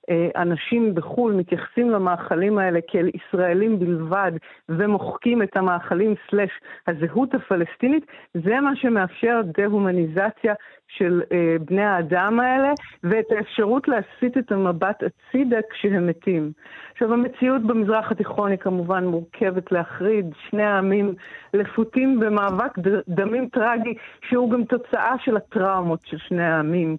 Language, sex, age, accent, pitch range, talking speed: Hebrew, female, 50-69, native, 180-235 Hz, 120 wpm